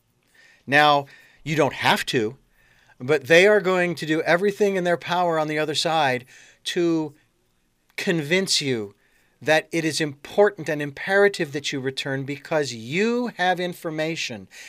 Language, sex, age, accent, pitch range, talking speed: English, male, 40-59, American, 140-185 Hz, 145 wpm